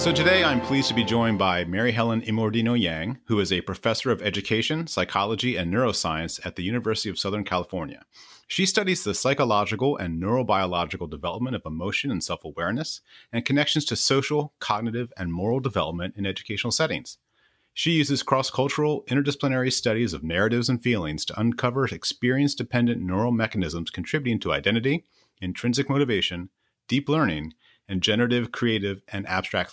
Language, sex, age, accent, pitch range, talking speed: English, male, 30-49, American, 95-130 Hz, 150 wpm